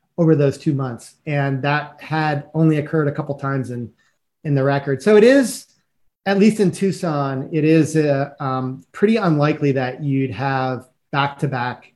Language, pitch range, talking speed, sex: English, 135-160 Hz, 170 wpm, male